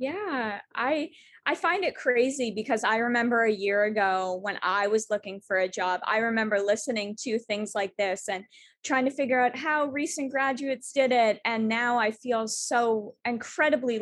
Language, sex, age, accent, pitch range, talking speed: English, female, 20-39, American, 210-265 Hz, 180 wpm